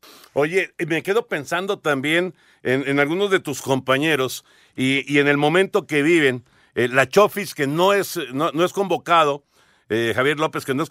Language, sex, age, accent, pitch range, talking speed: Spanish, male, 50-69, Mexican, 130-185 Hz, 185 wpm